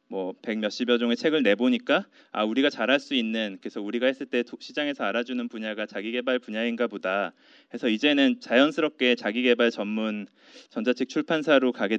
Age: 20-39